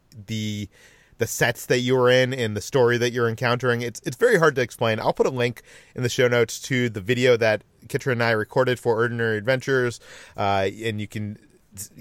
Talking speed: 215 wpm